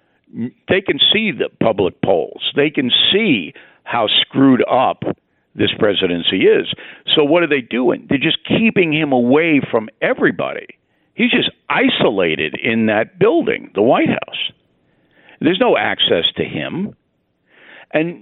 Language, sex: English, male